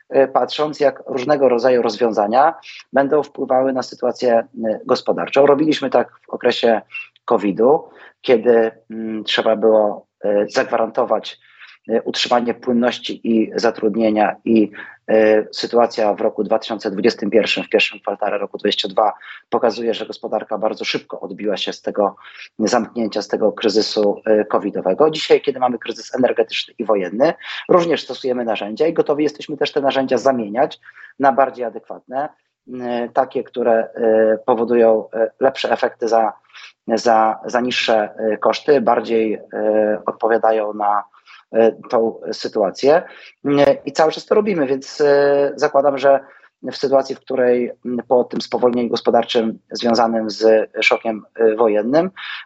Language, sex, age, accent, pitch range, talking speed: Polish, male, 30-49, native, 110-135 Hz, 115 wpm